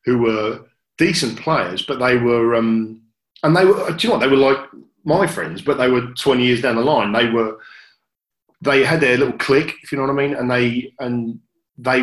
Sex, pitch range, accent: male, 115-140 Hz, British